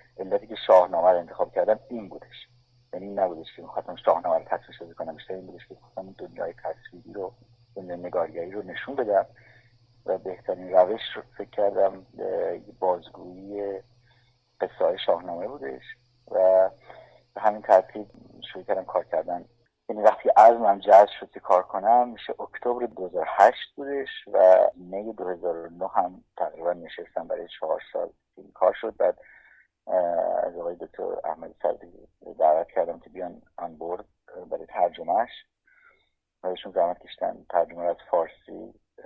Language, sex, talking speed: Persian, male, 140 wpm